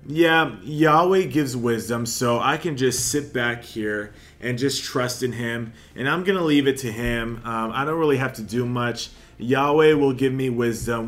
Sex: male